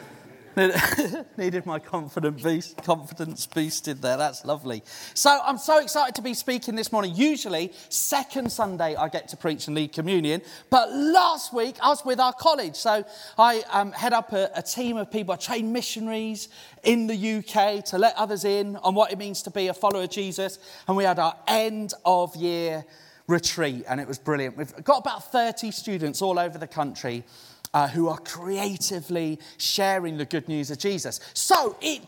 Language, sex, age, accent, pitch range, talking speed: English, male, 30-49, British, 150-220 Hz, 185 wpm